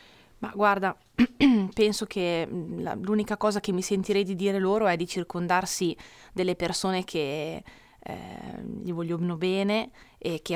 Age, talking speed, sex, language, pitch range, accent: 20-39, 135 wpm, female, Italian, 170-195 Hz, native